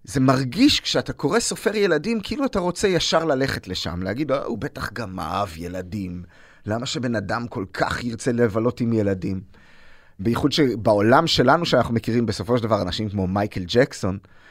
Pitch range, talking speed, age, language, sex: 110-175 Hz, 160 wpm, 30-49, Hebrew, male